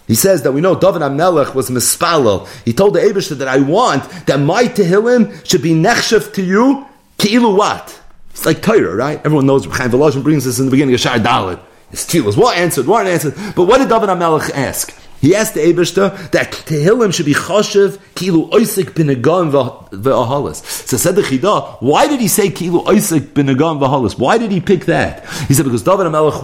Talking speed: 205 wpm